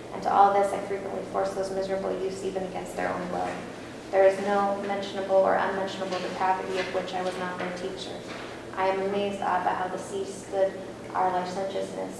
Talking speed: 190 wpm